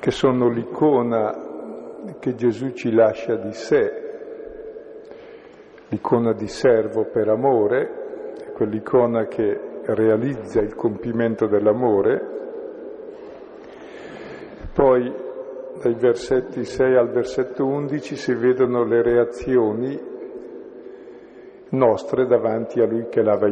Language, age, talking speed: Italian, 50-69, 95 wpm